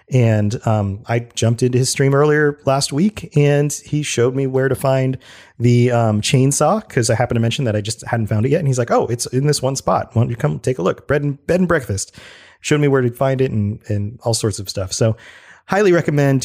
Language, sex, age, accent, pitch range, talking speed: English, male, 30-49, American, 115-135 Hz, 250 wpm